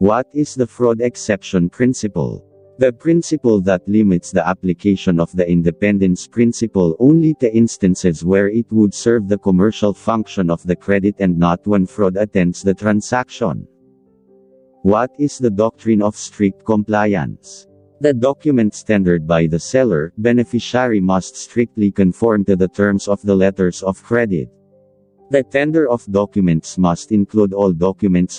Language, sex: English, male